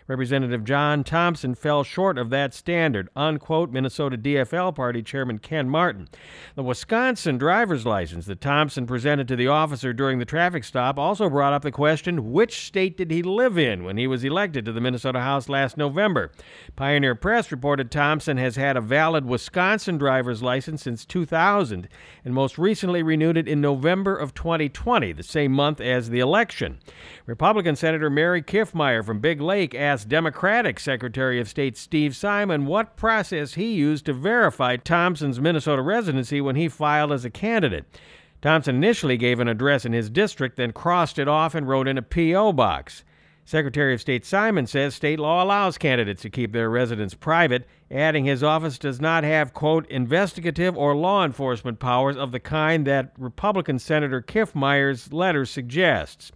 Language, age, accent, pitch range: English, 50-69, American, 130-165 Hz